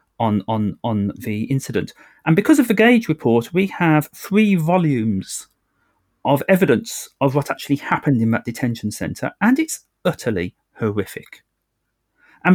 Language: English